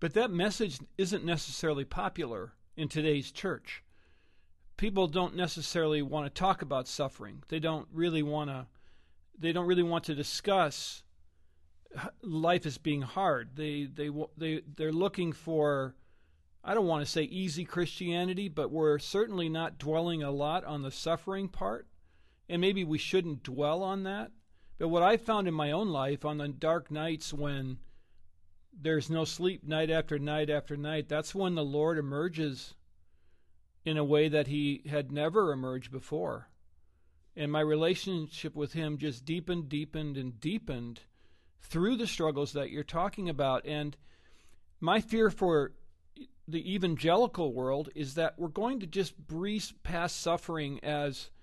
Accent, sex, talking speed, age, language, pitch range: American, male, 155 wpm, 40-59, English, 135-170 Hz